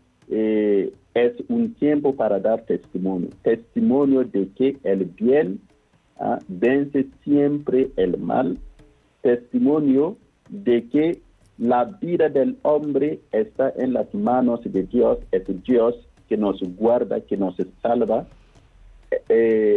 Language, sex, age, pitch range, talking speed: Spanish, male, 50-69, 120-180 Hz, 115 wpm